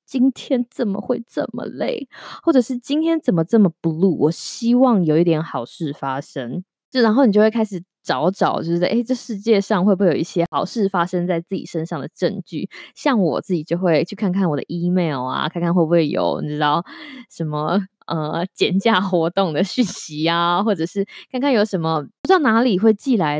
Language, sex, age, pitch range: Chinese, female, 20-39, 160-225 Hz